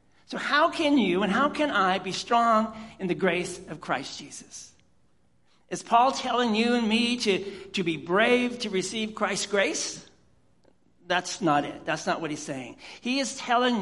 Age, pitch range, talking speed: 60-79, 160-235 Hz, 180 wpm